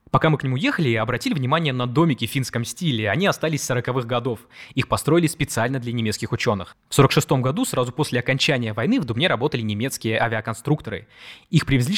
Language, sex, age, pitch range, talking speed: Russian, male, 20-39, 120-160 Hz, 185 wpm